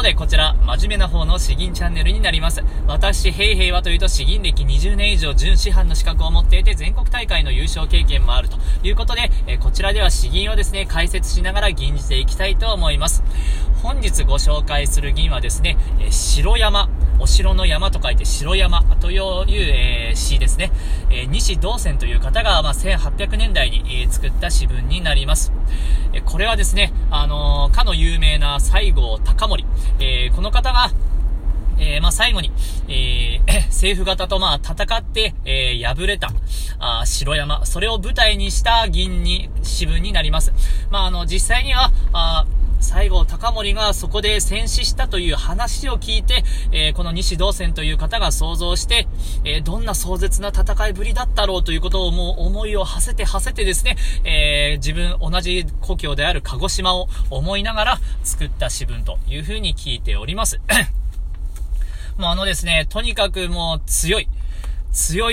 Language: Japanese